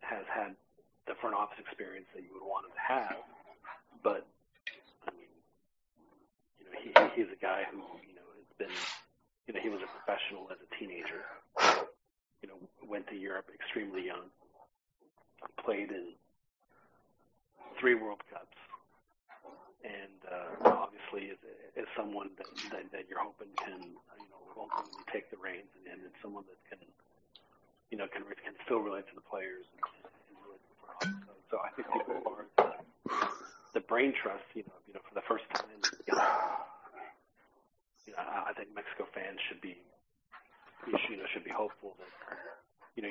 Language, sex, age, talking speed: English, male, 40-59, 165 wpm